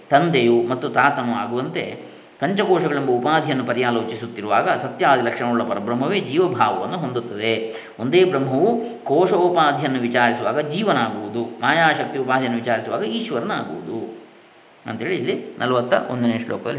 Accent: native